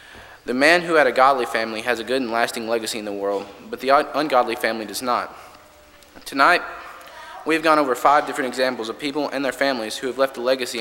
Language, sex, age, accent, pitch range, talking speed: English, male, 20-39, American, 120-150 Hz, 215 wpm